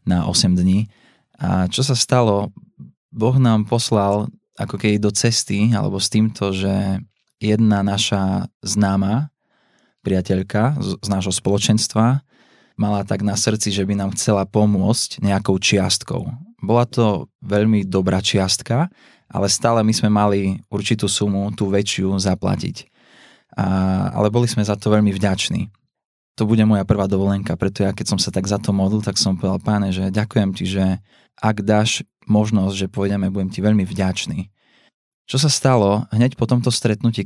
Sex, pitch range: male, 100-110 Hz